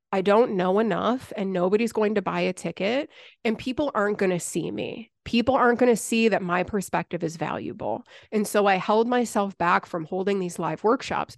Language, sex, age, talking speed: English, female, 30-49, 205 wpm